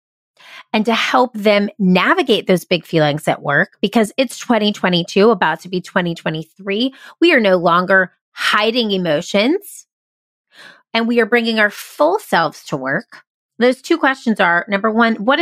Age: 30-49